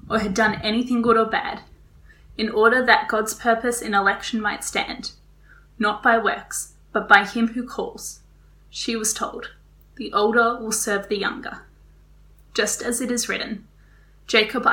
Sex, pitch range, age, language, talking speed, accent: female, 205-230 Hz, 10-29, English, 160 wpm, Australian